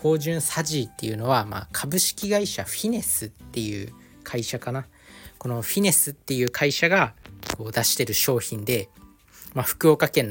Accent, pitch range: native, 115-150 Hz